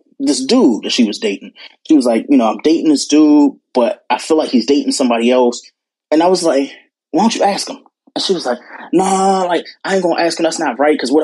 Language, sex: English, male